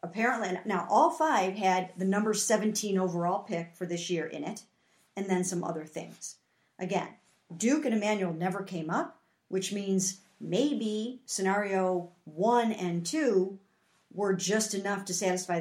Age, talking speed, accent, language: 50-69, 150 wpm, American, English